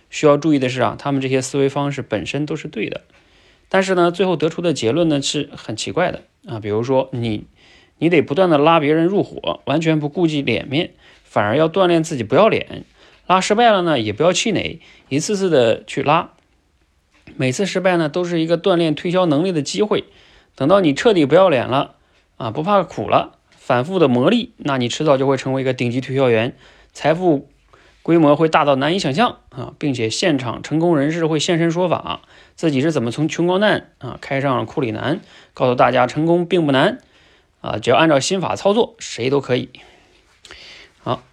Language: Chinese